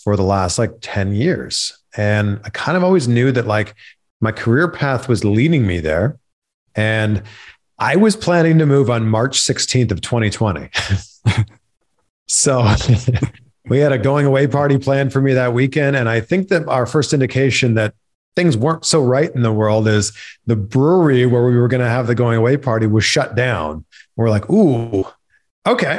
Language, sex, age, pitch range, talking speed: English, male, 40-59, 105-140 Hz, 180 wpm